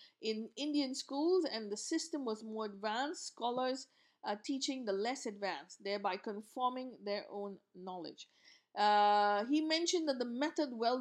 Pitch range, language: 210-285 Hz, English